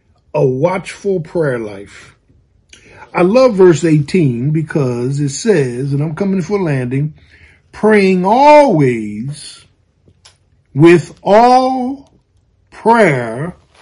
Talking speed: 95 wpm